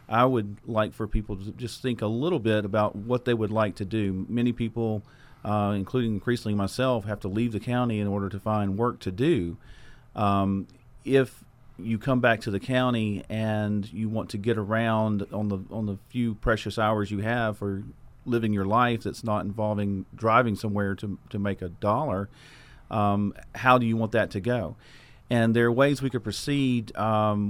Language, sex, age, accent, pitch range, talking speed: English, male, 40-59, American, 105-125 Hz, 195 wpm